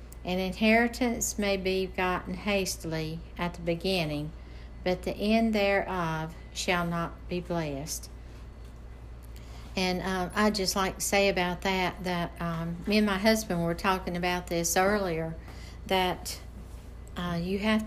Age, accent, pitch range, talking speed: 60-79, American, 165-190 Hz, 140 wpm